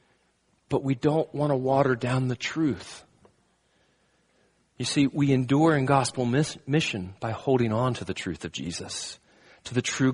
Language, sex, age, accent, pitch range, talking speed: English, male, 40-59, American, 105-130 Hz, 160 wpm